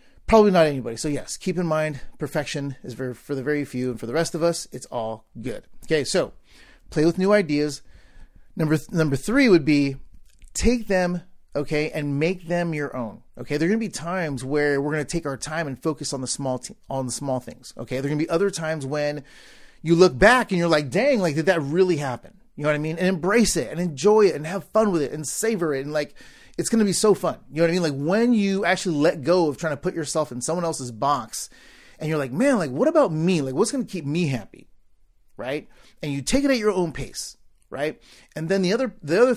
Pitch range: 140-185 Hz